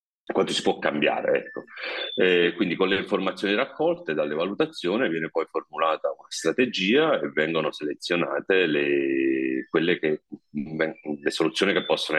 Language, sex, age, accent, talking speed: Italian, male, 40-59, native, 140 wpm